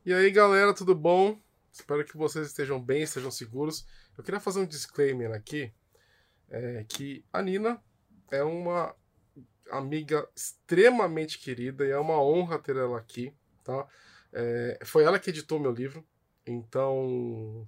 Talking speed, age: 150 wpm, 20-39